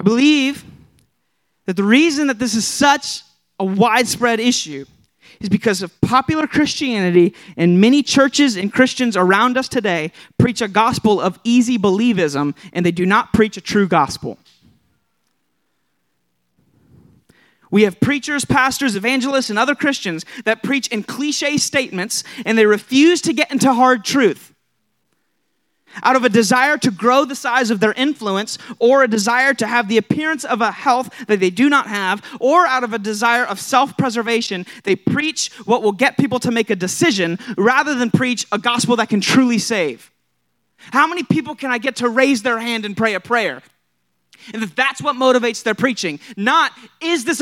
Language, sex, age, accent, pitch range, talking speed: English, male, 30-49, American, 200-270 Hz, 170 wpm